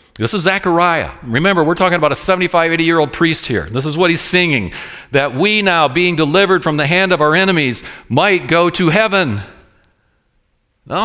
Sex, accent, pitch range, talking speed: male, American, 130-170 Hz, 180 wpm